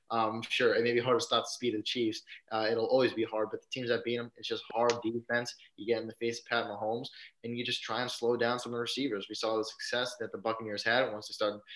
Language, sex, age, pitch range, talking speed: English, male, 20-39, 105-120 Hz, 295 wpm